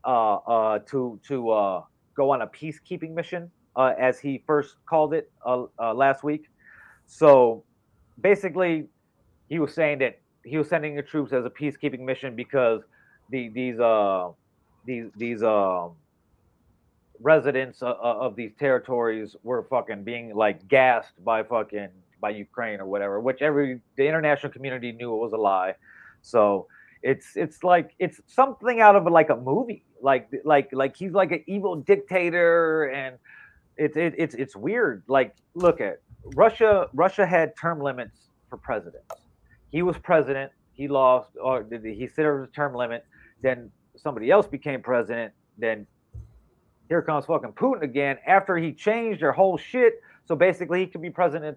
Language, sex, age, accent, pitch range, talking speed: English, male, 30-49, American, 120-170 Hz, 160 wpm